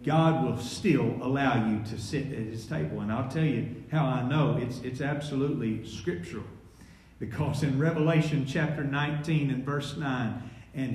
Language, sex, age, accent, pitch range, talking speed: English, male, 50-69, American, 140-205 Hz, 165 wpm